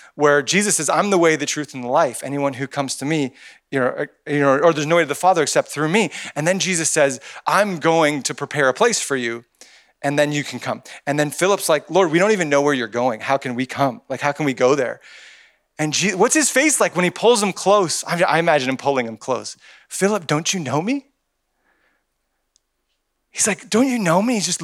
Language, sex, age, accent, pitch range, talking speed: English, male, 30-49, American, 125-185 Hz, 245 wpm